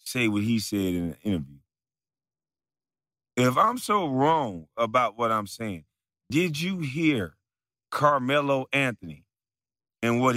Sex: male